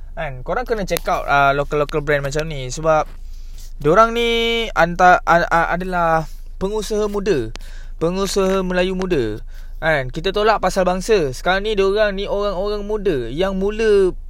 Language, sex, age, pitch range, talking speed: Malay, male, 20-39, 130-200 Hz, 150 wpm